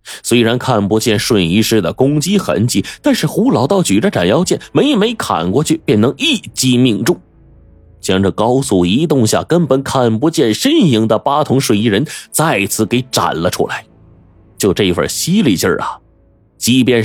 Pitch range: 95-135 Hz